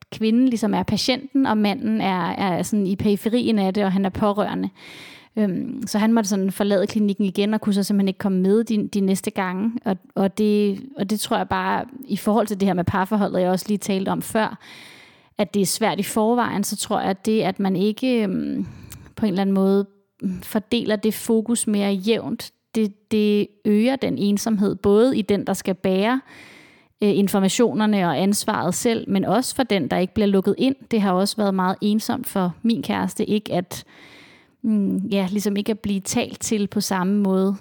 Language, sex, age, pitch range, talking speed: Danish, female, 30-49, 195-220 Hz, 200 wpm